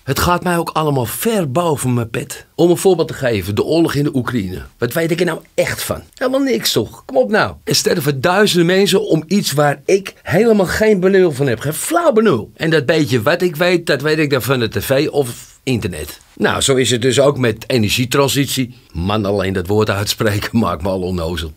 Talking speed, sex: 225 wpm, male